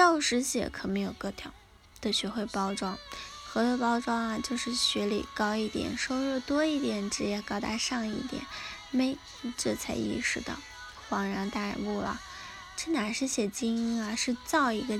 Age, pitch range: 20-39, 220-270 Hz